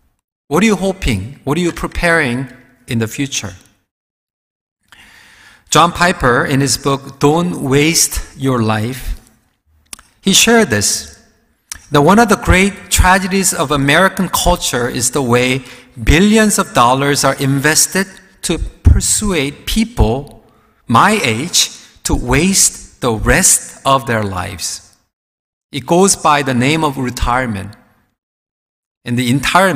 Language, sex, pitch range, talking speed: English, male, 130-185 Hz, 125 wpm